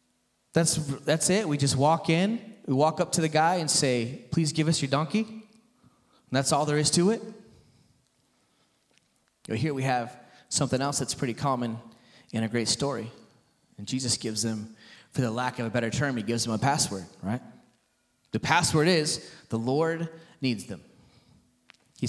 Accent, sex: American, male